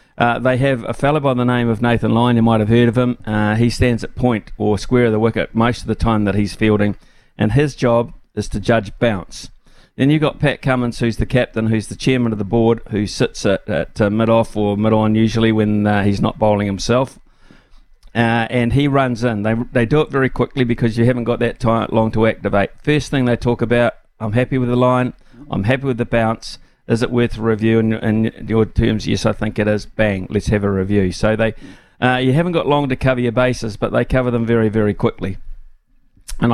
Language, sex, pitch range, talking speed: English, male, 110-125 Hz, 235 wpm